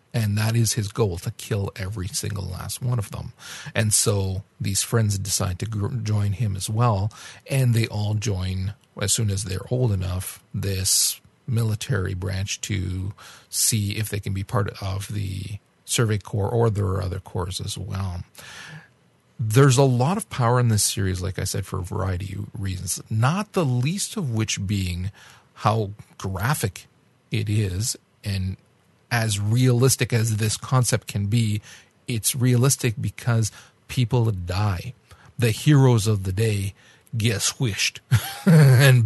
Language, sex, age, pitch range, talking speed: English, male, 40-59, 100-125 Hz, 155 wpm